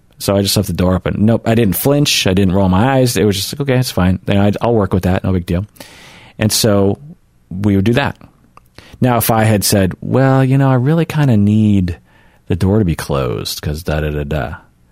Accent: American